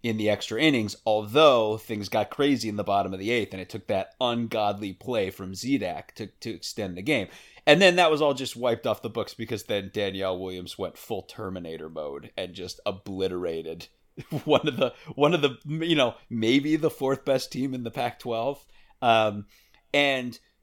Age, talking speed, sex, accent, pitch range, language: 30-49, 190 wpm, male, American, 105-135 Hz, English